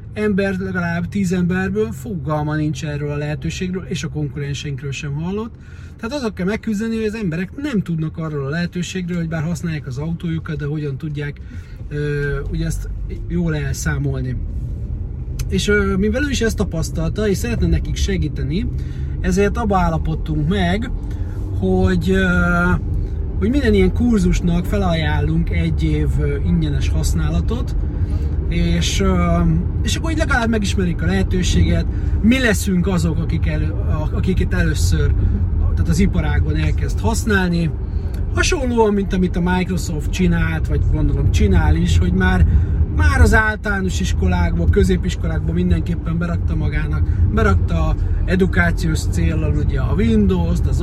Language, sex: Hungarian, male